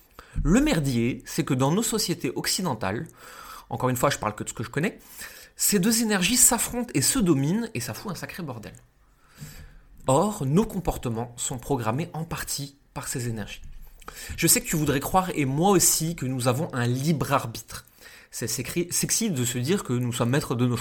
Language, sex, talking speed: French, male, 195 wpm